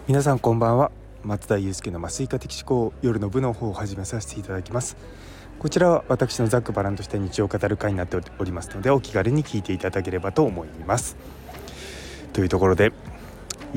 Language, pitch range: Japanese, 95-135 Hz